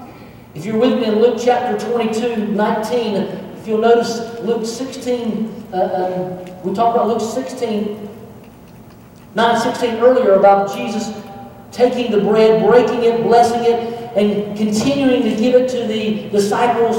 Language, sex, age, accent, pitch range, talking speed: English, male, 50-69, American, 220-255 Hz, 150 wpm